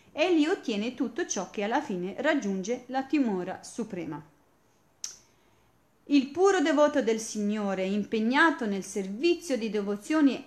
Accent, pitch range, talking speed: native, 205-300 Hz, 125 wpm